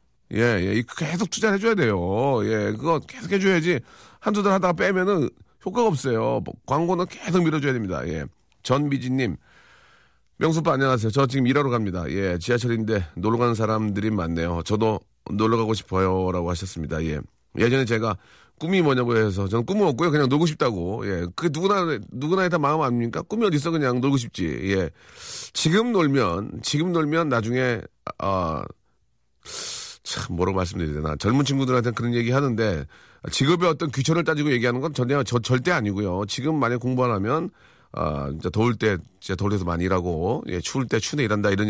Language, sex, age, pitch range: Korean, male, 40-59, 100-160 Hz